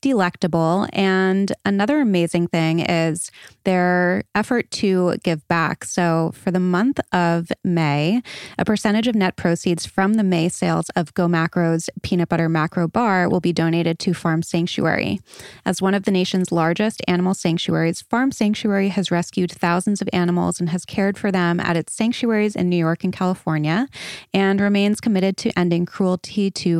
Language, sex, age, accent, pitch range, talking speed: English, female, 20-39, American, 170-205 Hz, 165 wpm